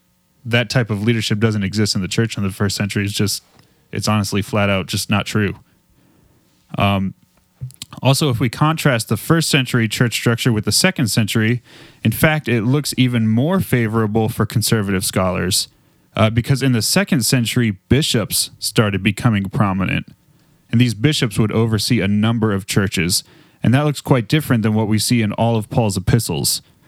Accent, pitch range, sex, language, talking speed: American, 105-130 Hz, male, English, 175 wpm